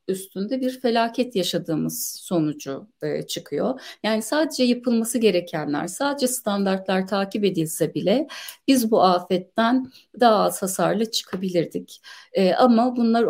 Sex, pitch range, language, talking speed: female, 180-240 Hz, Turkish, 110 wpm